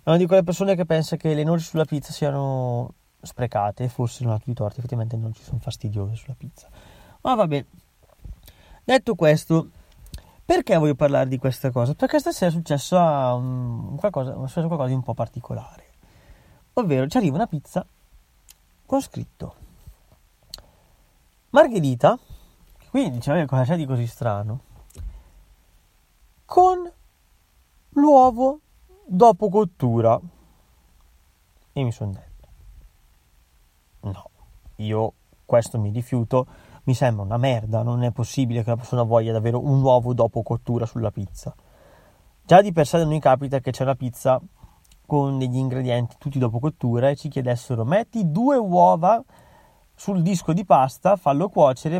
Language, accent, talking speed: Italian, native, 145 wpm